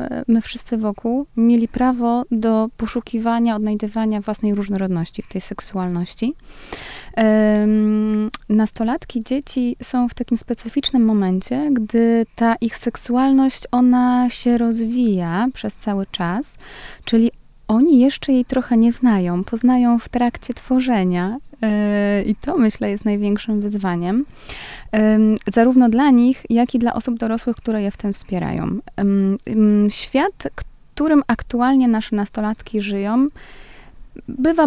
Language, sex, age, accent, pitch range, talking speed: Polish, female, 20-39, native, 205-245 Hz, 120 wpm